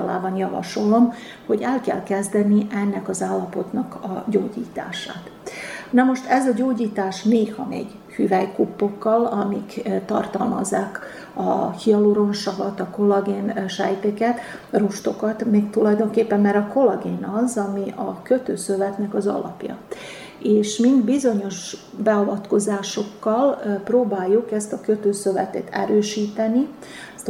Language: Hungarian